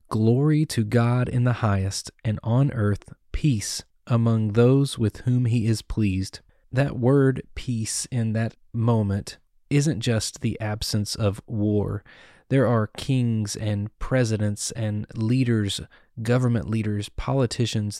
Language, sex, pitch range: English, male, 110-130 Hz